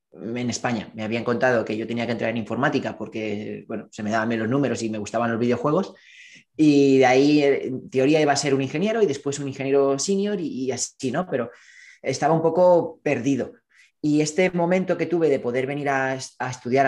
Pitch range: 120-160 Hz